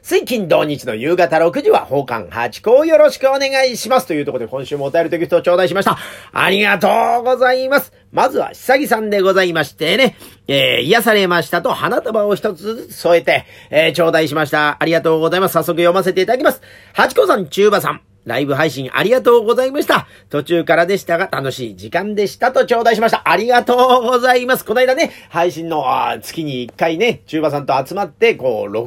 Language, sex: Japanese, male